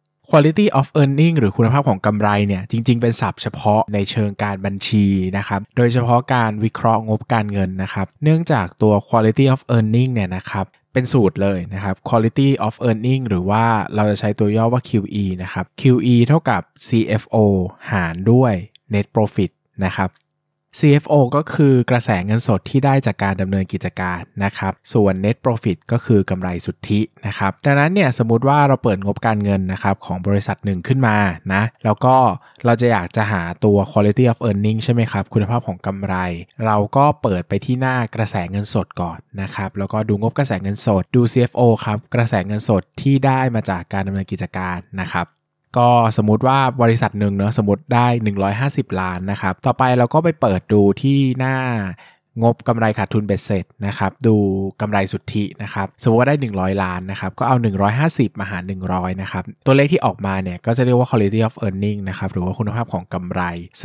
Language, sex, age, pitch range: Thai, male, 20-39, 100-125 Hz